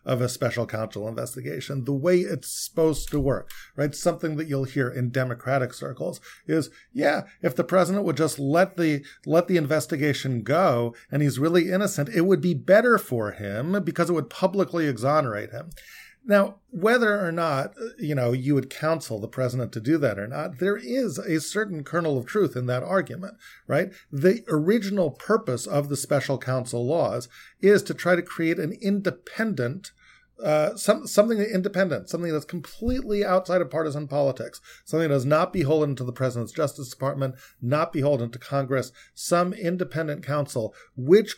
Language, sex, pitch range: English, male, 135-180 Hz